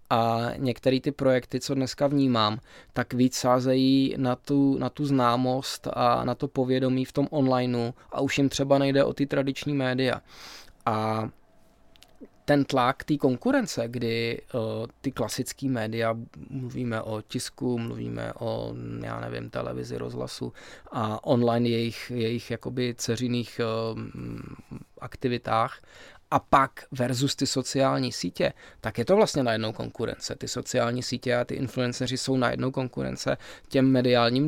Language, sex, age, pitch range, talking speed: Czech, male, 20-39, 115-130 Hz, 135 wpm